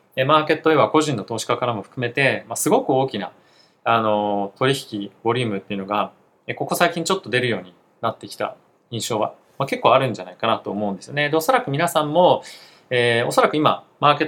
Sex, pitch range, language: male, 110-155 Hz, Japanese